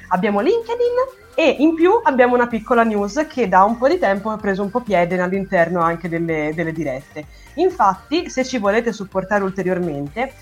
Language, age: Italian, 30-49